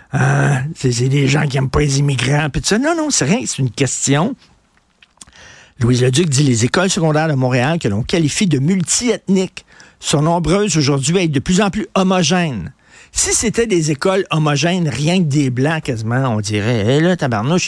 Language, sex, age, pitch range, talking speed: French, male, 60-79, 135-180 Hz, 205 wpm